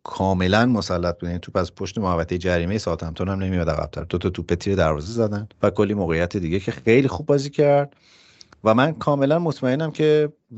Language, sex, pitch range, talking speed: Persian, male, 90-115 Hz, 200 wpm